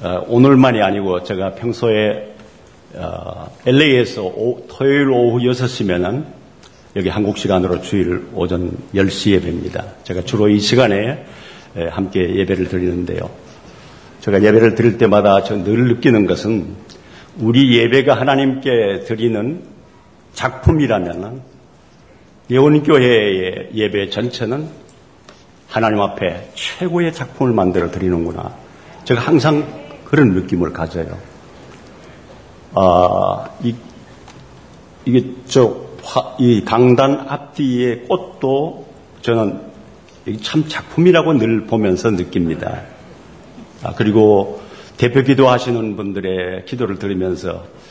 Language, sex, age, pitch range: Korean, male, 50-69, 95-130 Hz